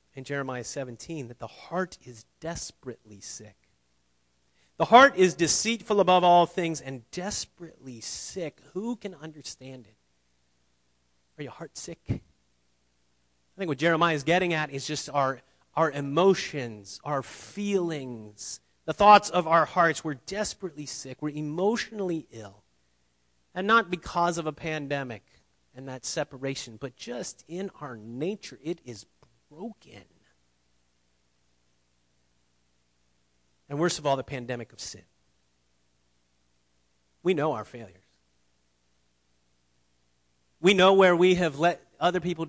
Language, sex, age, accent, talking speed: English, male, 30-49, American, 125 wpm